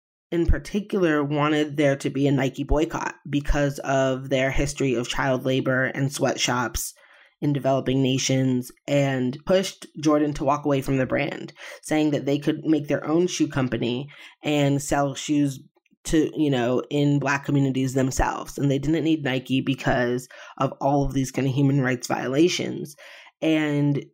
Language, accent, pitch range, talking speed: English, American, 135-150 Hz, 160 wpm